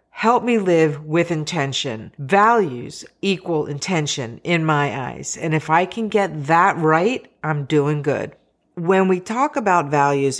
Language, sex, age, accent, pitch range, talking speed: English, female, 50-69, American, 145-190 Hz, 150 wpm